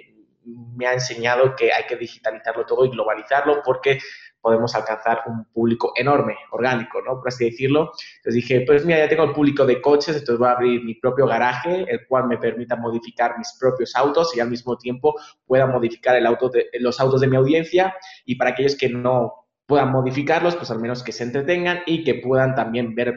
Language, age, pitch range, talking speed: Spanish, 20-39, 120-140 Hz, 195 wpm